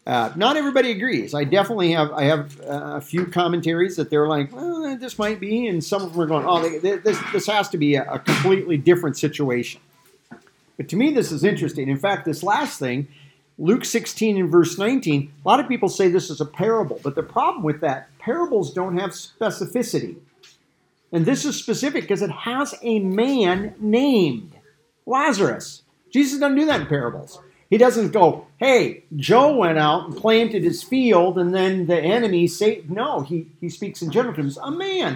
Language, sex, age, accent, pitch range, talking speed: English, male, 50-69, American, 150-215 Hz, 195 wpm